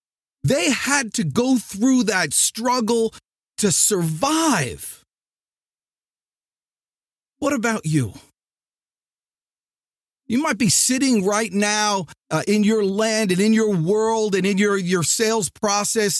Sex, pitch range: male, 180-250 Hz